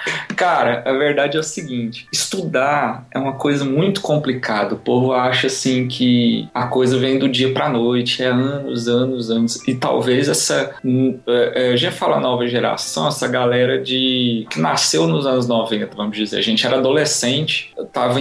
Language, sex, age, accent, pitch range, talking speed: Portuguese, male, 20-39, Brazilian, 120-145 Hz, 170 wpm